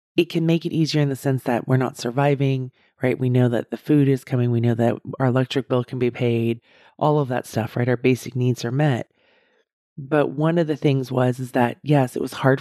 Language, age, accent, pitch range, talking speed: English, 30-49, American, 125-155 Hz, 245 wpm